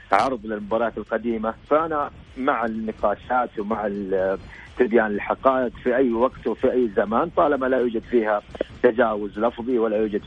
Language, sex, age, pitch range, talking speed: Arabic, male, 40-59, 105-130 Hz, 135 wpm